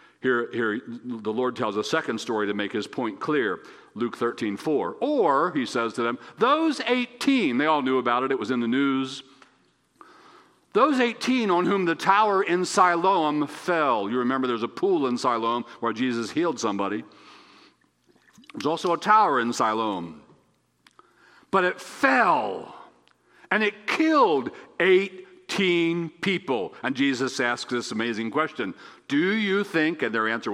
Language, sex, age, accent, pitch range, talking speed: English, male, 60-79, American, 125-195 Hz, 155 wpm